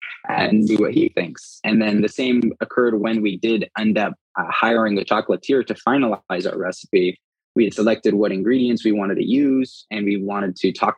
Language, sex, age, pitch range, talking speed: English, male, 20-39, 100-115 Hz, 200 wpm